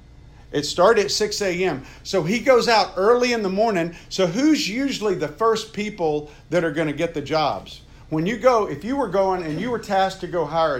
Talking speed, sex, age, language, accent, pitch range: 220 wpm, male, 50-69, English, American, 150-200 Hz